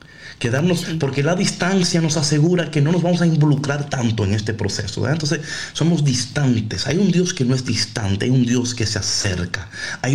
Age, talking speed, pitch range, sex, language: 30-49, 200 wpm, 100-135 Hz, male, Spanish